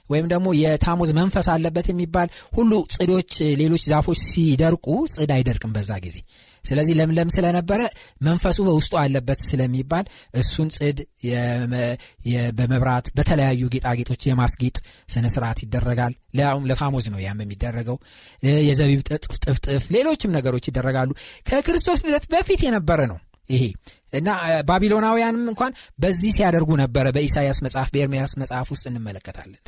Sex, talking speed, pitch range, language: male, 115 wpm, 130-190 Hz, Amharic